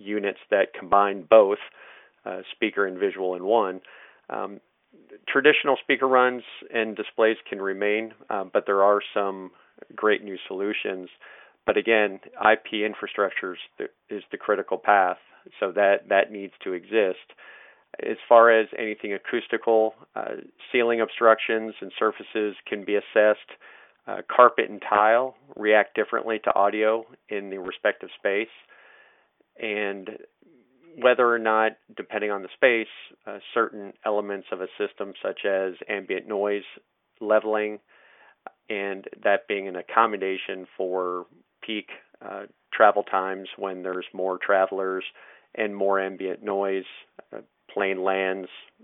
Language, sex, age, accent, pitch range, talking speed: English, male, 40-59, American, 95-110 Hz, 130 wpm